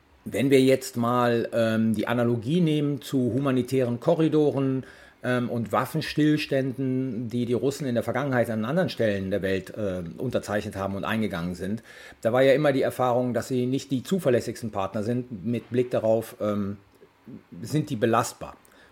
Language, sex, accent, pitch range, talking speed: German, male, German, 115-150 Hz, 160 wpm